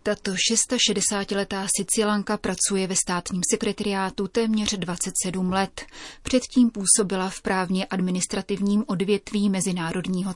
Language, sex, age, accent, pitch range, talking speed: Czech, female, 30-49, native, 180-210 Hz, 100 wpm